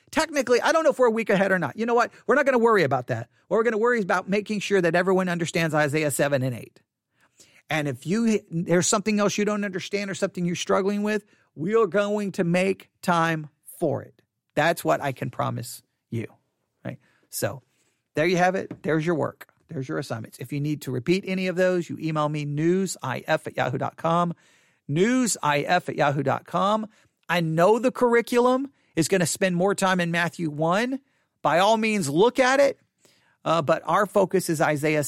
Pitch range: 155-220 Hz